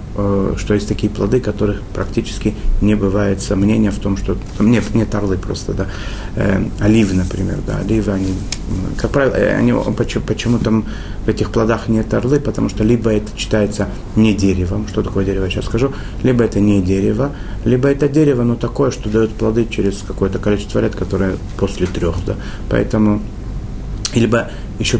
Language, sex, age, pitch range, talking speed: Russian, male, 30-49, 95-105 Hz, 170 wpm